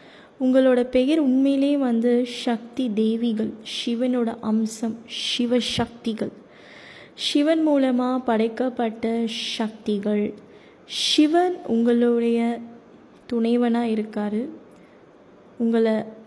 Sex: female